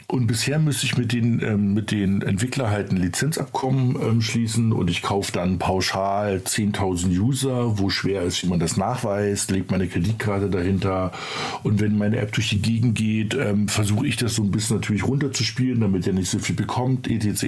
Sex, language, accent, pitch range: male, German, German, 100-130 Hz